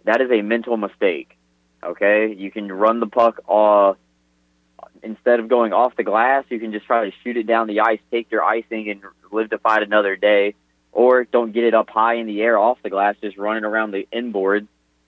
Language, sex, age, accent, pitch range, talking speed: English, male, 30-49, American, 95-115 Hz, 215 wpm